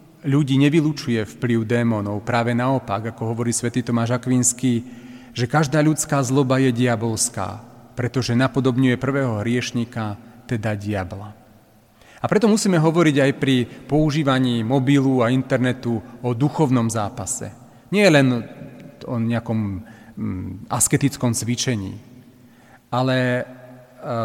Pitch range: 120-140 Hz